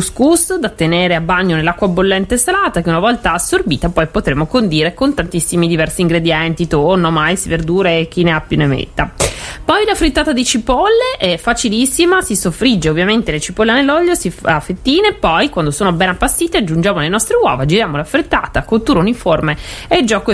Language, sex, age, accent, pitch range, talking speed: Italian, female, 30-49, native, 170-240 Hz, 175 wpm